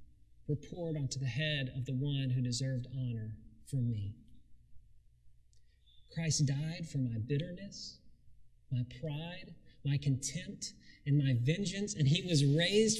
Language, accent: English, American